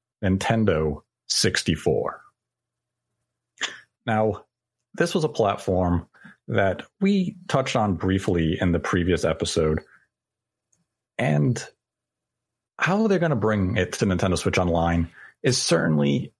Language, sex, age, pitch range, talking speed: English, male, 40-59, 90-130 Hz, 105 wpm